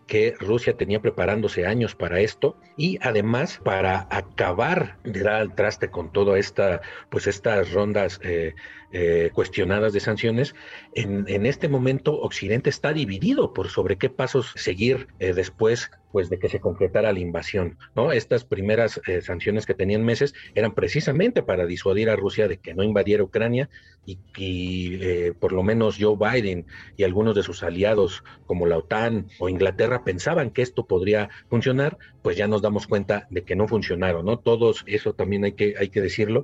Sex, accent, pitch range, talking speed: male, Mexican, 95-125 Hz, 175 wpm